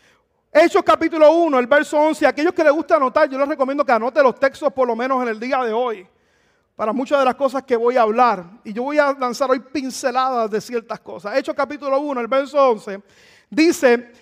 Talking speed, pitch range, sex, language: 220 wpm, 250-320 Hz, male, Spanish